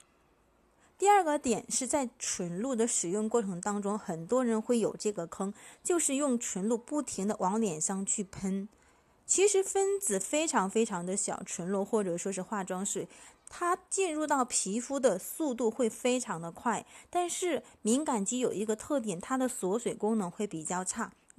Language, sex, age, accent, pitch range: Chinese, female, 20-39, native, 195-260 Hz